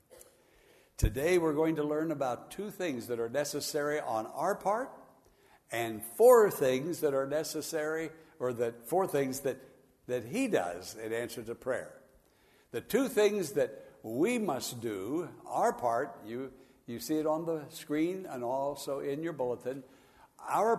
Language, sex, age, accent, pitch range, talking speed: English, male, 60-79, American, 130-195 Hz, 155 wpm